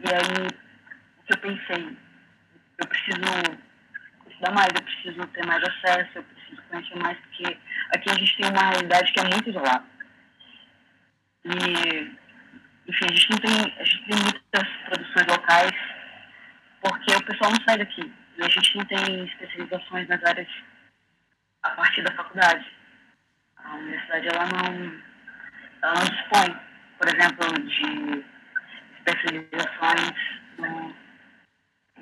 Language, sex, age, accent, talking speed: Portuguese, female, 20-39, Brazilian, 140 wpm